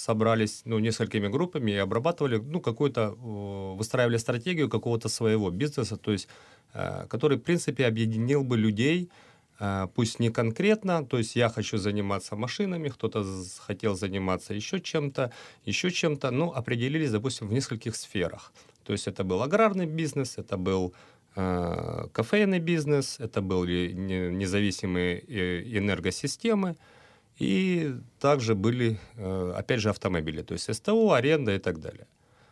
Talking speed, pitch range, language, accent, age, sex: 135 wpm, 100-145 Hz, Ukrainian, native, 30-49, male